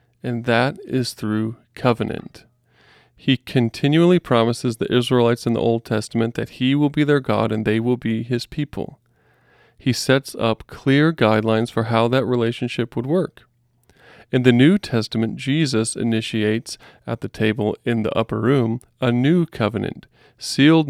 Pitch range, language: 110-135 Hz, English